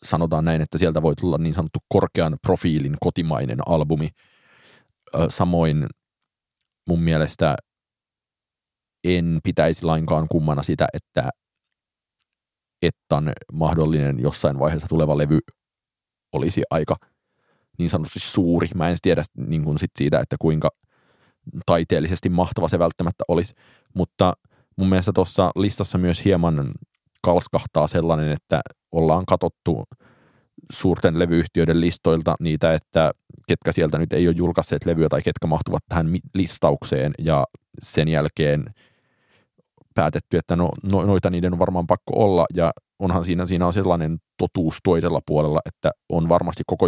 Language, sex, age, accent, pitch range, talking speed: Finnish, male, 30-49, native, 80-90 Hz, 125 wpm